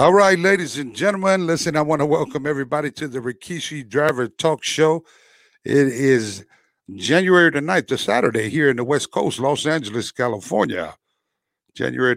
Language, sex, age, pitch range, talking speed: English, male, 60-79, 120-155 Hz, 165 wpm